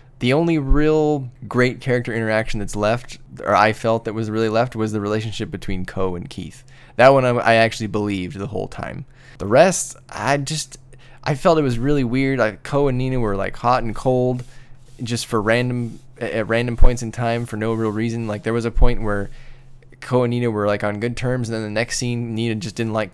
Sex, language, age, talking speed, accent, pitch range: male, English, 10-29, 220 wpm, American, 105-125 Hz